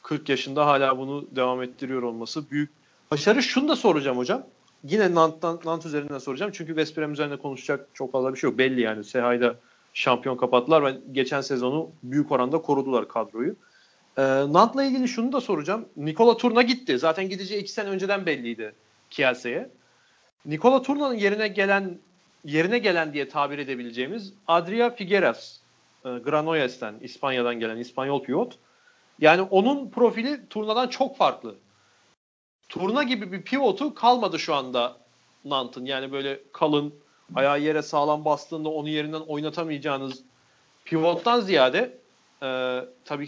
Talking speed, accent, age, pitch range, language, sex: 140 wpm, native, 40-59, 135-205 Hz, Turkish, male